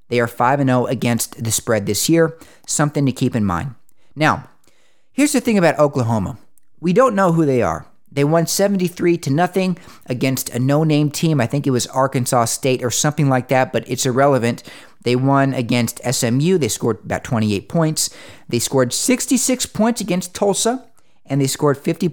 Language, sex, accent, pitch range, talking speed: English, male, American, 125-180 Hz, 180 wpm